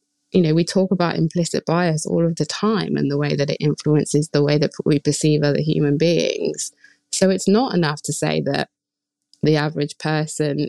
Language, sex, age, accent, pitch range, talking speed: English, female, 20-39, British, 150-200 Hz, 195 wpm